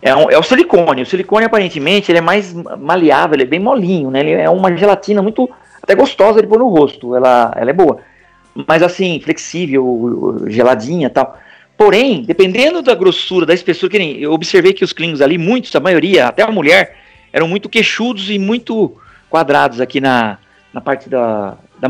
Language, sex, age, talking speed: Portuguese, male, 40-59, 185 wpm